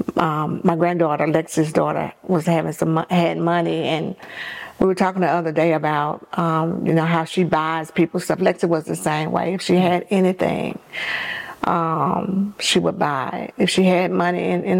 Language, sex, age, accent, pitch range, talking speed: English, female, 50-69, American, 165-185 Hz, 185 wpm